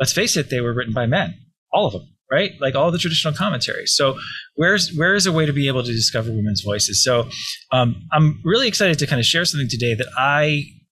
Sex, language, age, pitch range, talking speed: male, English, 20-39, 110-150 Hz, 235 wpm